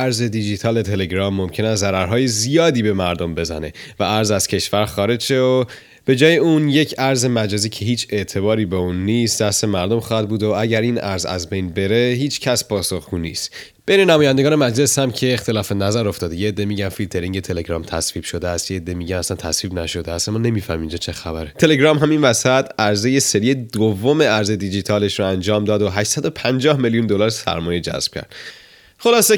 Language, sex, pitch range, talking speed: Persian, male, 95-130 Hz, 175 wpm